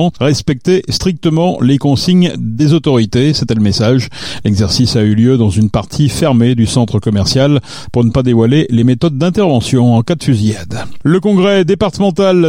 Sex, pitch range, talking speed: male, 120-165 Hz, 165 wpm